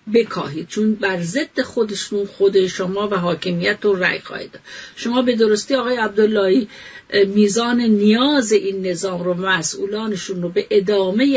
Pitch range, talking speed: 195-250 Hz, 125 wpm